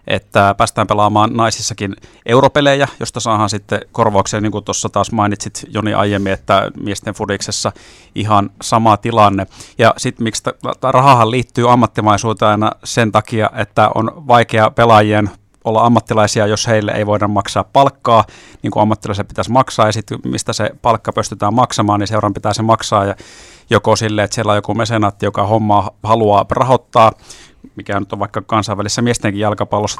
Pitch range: 105-115 Hz